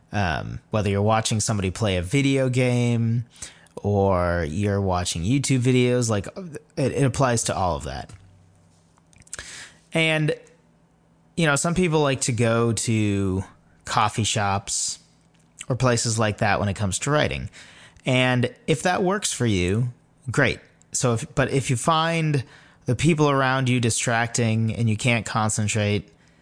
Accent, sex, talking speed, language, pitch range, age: American, male, 145 wpm, English, 100-135 Hz, 30-49